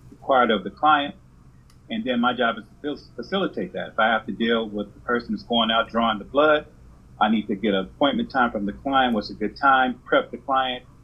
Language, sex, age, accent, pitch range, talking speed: English, male, 40-59, American, 100-130 Hz, 235 wpm